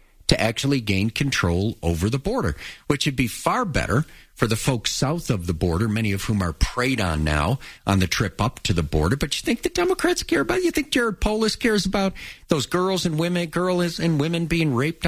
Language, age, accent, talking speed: English, 50-69, American, 225 wpm